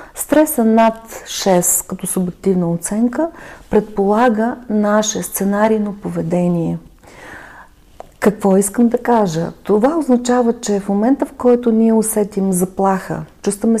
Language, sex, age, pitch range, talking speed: Bulgarian, female, 40-59, 185-235 Hz, 115 wpm